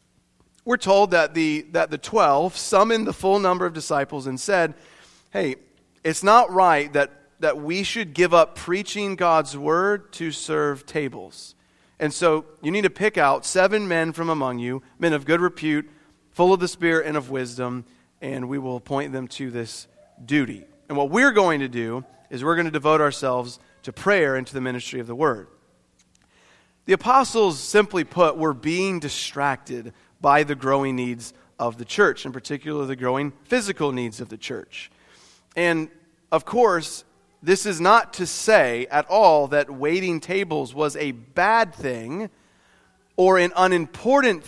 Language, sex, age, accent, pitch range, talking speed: English, male, 30-49, American, 130-180 Hz, 170 wpm